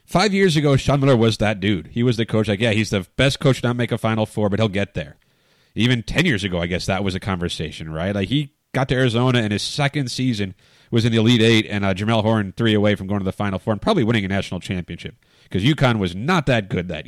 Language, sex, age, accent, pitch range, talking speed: English, male, 30-49, American, 105-140 Hz, 275 wpm